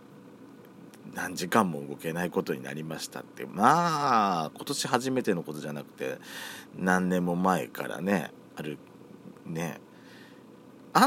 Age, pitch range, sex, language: 40-59, 80-110 Hz, male, Japanese